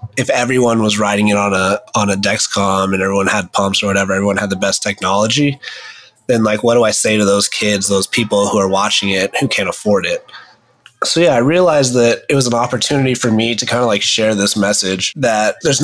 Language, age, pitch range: English, 20-39, 95-115 Hz